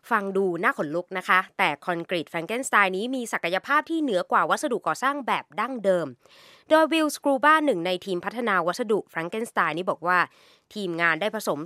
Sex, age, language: female, 20-39, Thai